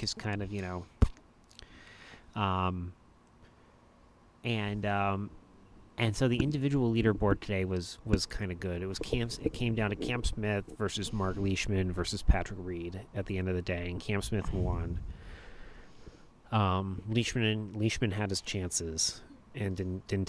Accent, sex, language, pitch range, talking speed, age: American, male, English, 95-115 Hz, 155 wpm, 30-49